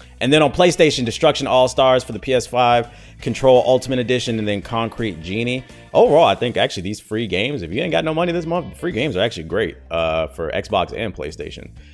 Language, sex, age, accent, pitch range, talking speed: English, male, 30-49, American, 90-125 Hz, 205 wpm